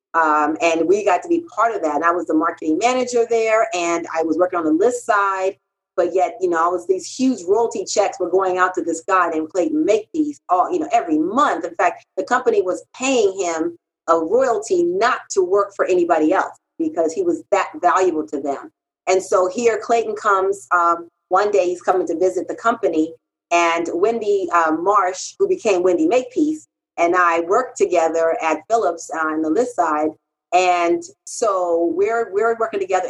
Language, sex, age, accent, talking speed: English, female, 40-59, American, 195 wpm